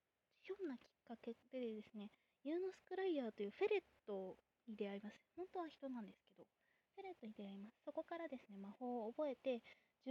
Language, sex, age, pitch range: Japanese, female, 20-39, 215-290 Hz